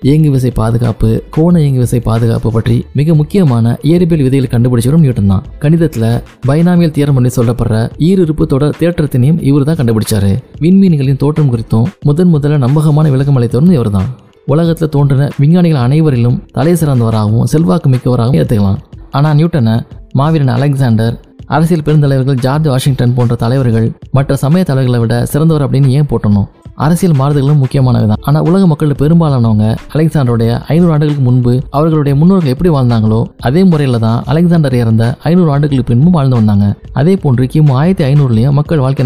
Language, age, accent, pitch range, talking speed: Tamil, 20-39, native, 120-155 Hz, 135 wpm